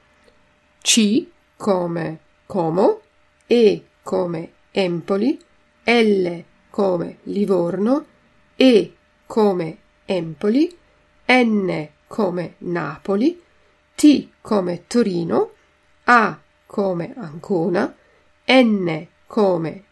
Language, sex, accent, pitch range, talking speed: Italian, female, native, 185-245 Hz, 70 wpm